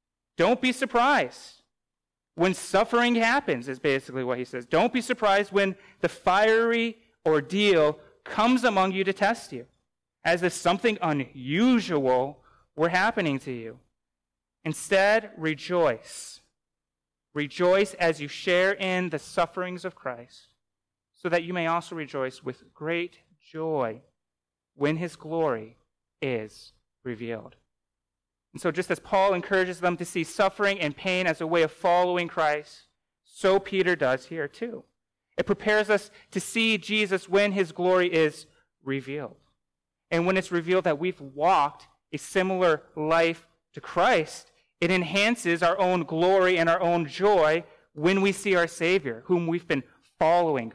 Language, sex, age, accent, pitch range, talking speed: English, male, 30-49, American, 140-190 Hz, 145 wpm